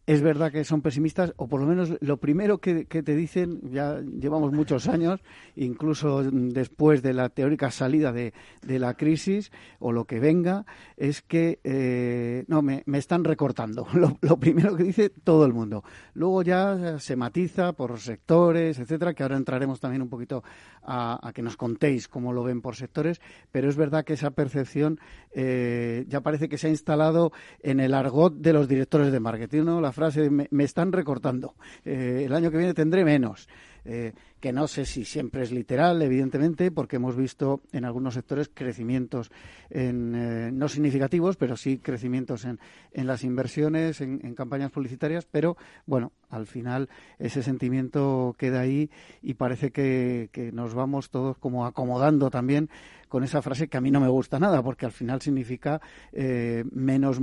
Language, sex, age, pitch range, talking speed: Spanish, male, 50-69, 125-155 Hz, 180 wpm